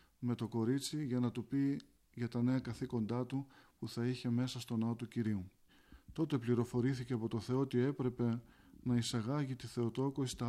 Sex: male